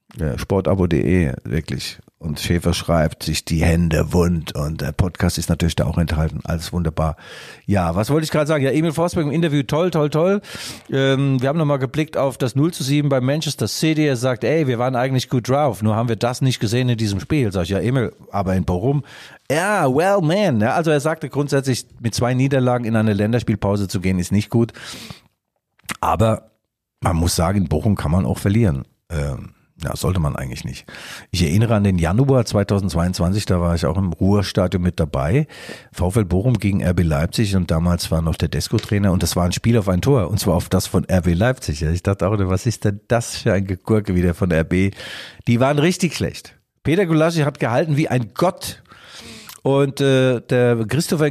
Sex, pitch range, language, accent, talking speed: male, 95-135 Hz, German, German, 205 wpm